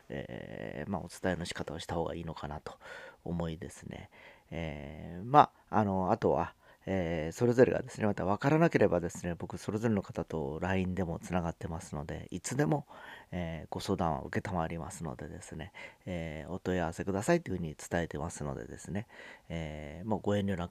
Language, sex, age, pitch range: Japanese, male, 40-59, 80-105 Hz